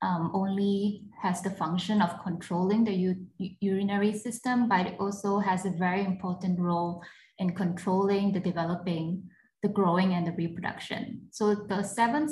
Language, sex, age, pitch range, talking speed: English, female, 20-39, 175-205 Hz, 145 wpm